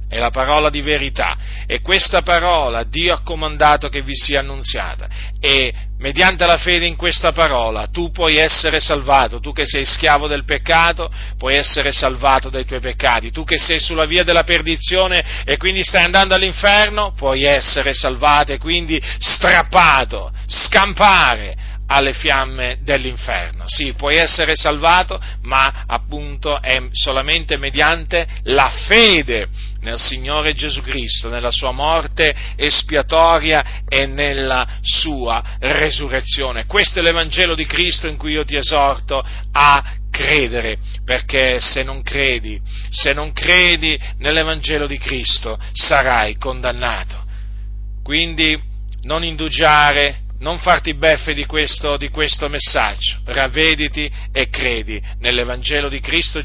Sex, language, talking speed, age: male, Italian, 130 wpm, 40-59